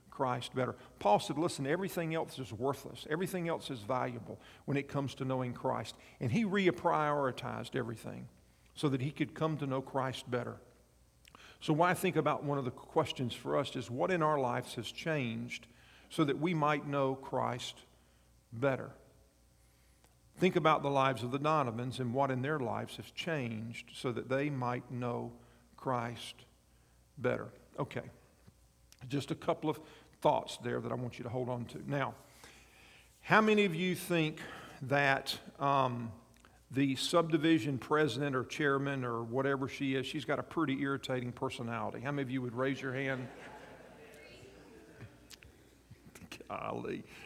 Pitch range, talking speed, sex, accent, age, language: 120-155 Hz, 155 wpm, male, American, 50-69, English